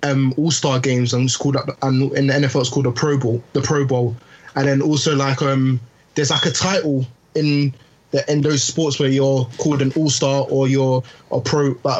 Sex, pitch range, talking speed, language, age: male, 135-150 Hz, 220 wpm, English, 20-39